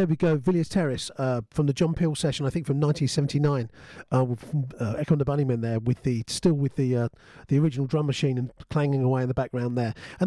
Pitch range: 130-175 Hz